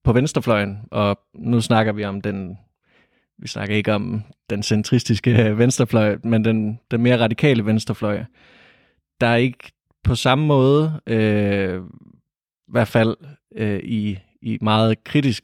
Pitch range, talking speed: 105-120 Hz, 135 wpm